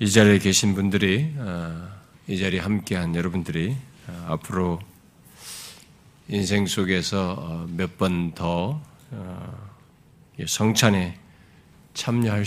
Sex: male